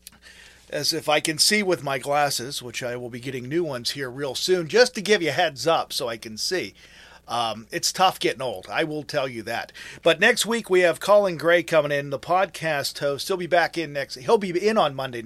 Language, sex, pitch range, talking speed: English, male, 150-195 Hz, 240 wpm